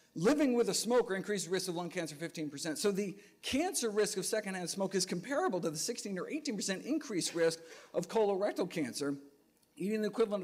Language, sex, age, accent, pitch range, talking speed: English, male, 50-69, American, 145-195 Hz, 185 wpm